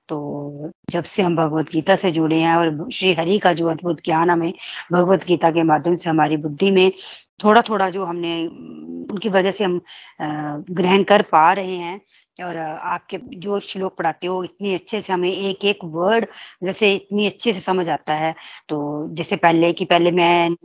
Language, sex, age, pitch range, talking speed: Hindi, female, 20-39, 170-200 Hz, 180 wpm